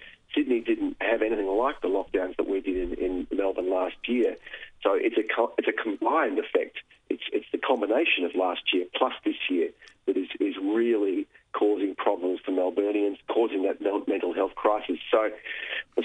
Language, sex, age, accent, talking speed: English, male, 40-59, Australian, 180 wpm